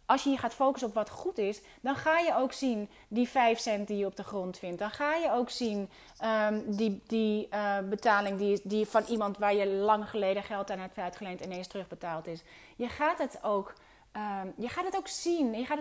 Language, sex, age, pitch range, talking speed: Dutch, female, 30-49, 200-280 Hz, 230 wpm